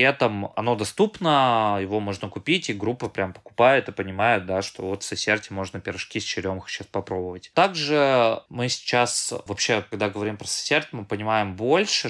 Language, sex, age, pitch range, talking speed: Russian, male, 20-39, 100-120 Hz, 175 wpm